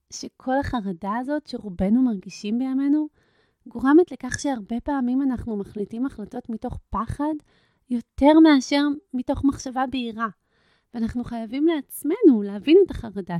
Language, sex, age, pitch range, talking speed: Hebrew, female, 30-49, 200-280 Hz, 115 wpm